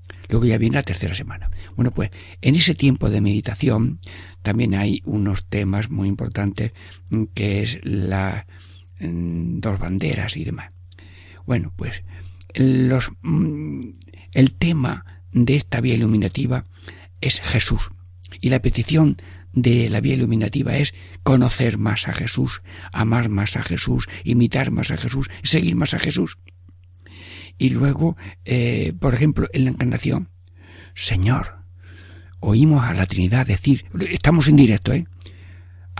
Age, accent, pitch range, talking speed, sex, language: 60-79, Spanish, 90-120 Hz, 130 wpm, male, Spanish